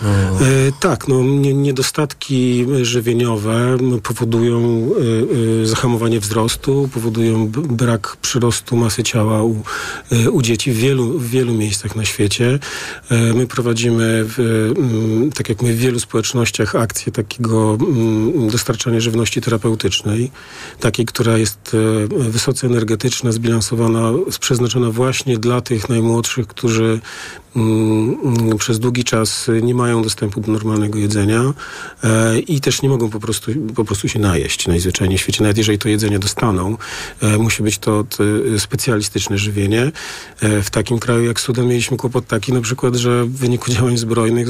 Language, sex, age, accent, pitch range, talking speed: Polish, male, 40-59, native, 110-120 Hz, 135 wpm